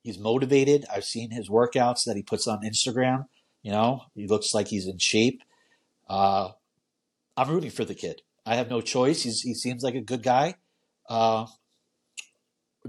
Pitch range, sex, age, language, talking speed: 115-145 Hz, male, 40-59, English, 170 wpm